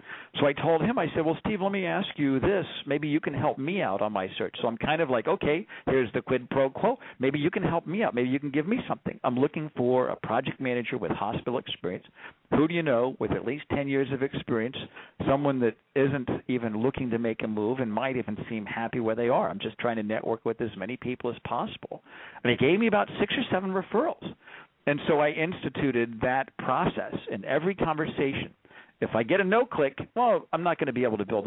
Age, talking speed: 50-69, 240 wpm